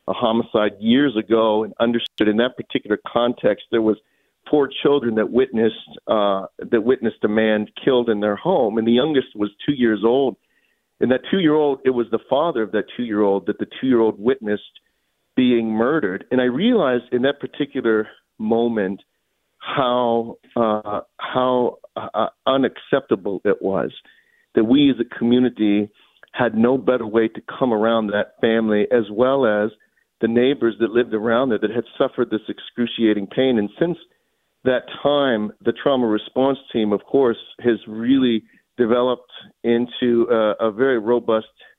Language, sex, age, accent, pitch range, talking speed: English, male, 50-69, American, 110-135 Hz, 155 wpm